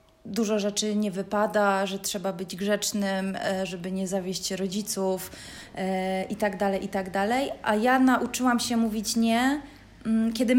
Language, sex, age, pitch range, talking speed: Polish, female, 20-39, 195-225 Hz, 140 wpm